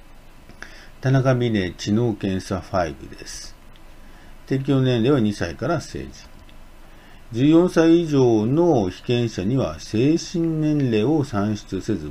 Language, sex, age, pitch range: Japanese, male, 50-69, 95-135 Hz